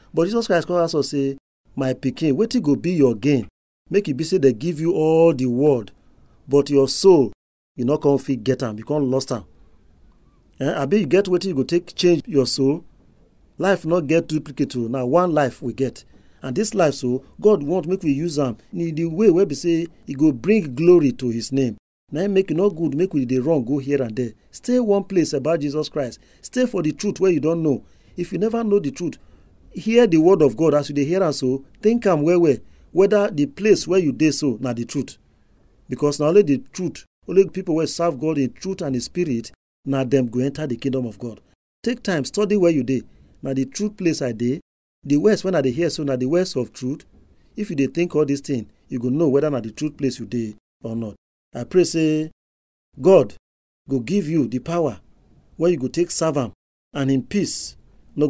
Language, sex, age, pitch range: English, male, 40-59, 130-175 Hz